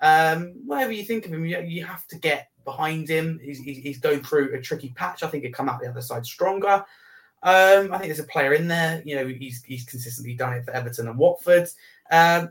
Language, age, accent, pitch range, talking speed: English, 20-39, British, 135-170 Hz, 240 wpm